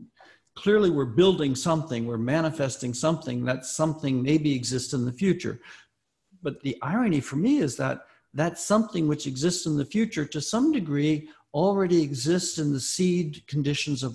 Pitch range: 115-150 Hz